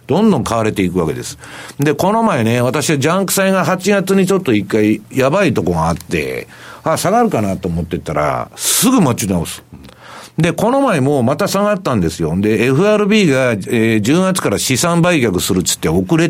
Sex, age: male, 50-69